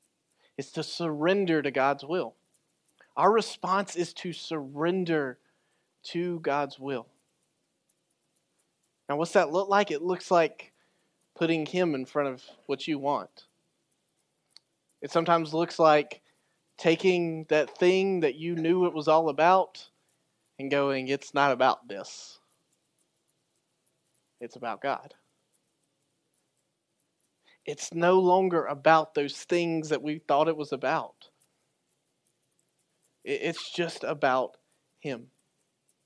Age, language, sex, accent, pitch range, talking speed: 30-49, English, male, American, 150-180 Hz, 115 wpm